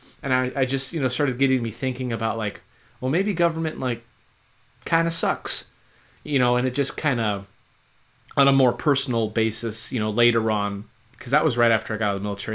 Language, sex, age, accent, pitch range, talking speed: English, male, 30-49, American, 105-130 Hz, 220 wpm